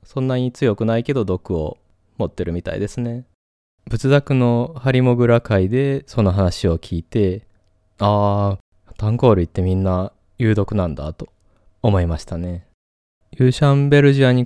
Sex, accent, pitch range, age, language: male, native, 95-130 Hz, 20-39, Japanese